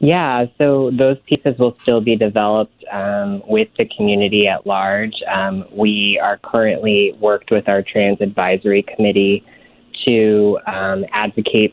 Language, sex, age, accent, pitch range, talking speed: English, female, 20-39, American, 95-110 Hz, 140 wpm